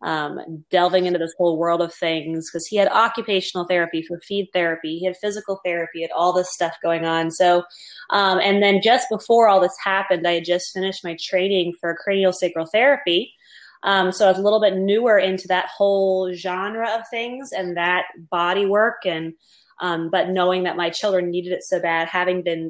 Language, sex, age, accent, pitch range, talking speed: English, female, 20-39, American, 175-195 Hz, 200 wpm